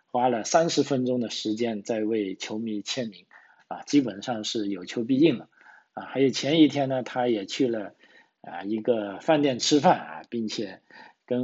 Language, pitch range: Chinese, 105-125 Hz